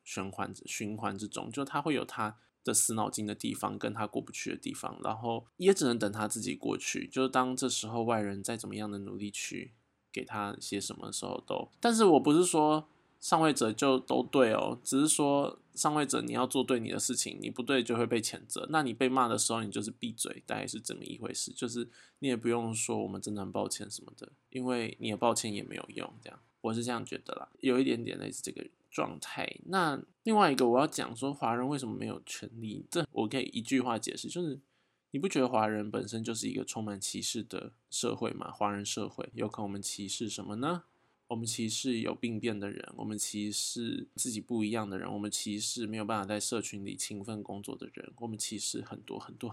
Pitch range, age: 105-130 Hz, 20-39